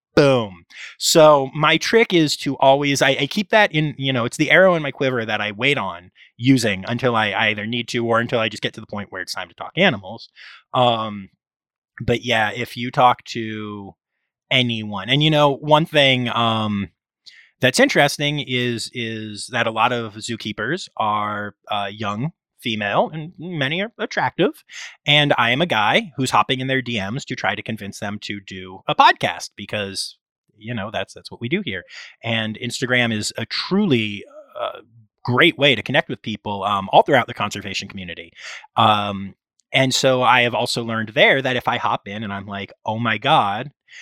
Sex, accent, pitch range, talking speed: male, American, 105-145 Hz, 190 wpm